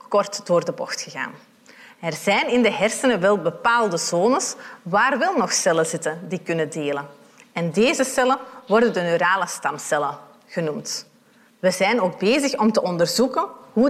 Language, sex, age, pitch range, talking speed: Dutch, female, 30-49, 180-235 Hz, 160 wpm